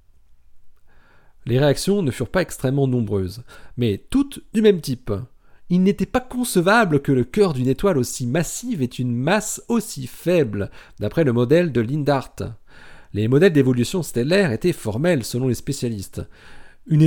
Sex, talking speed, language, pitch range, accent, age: male, 150 wpm, French, 105-165 Hz, French, 40-59